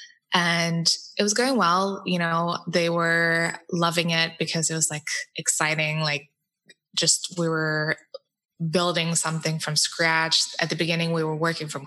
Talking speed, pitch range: 155 wpm, 165-205 Hz